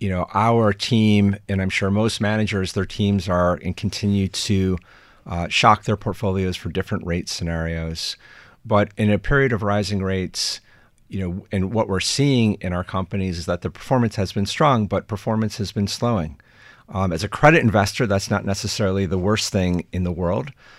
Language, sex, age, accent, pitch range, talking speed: English, male, 40-59, American, 90-105 Hz, 190 wpm